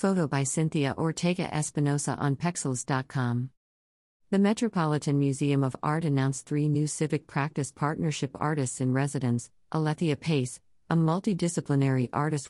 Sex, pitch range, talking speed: female, 130-155 Hz, 115 wpm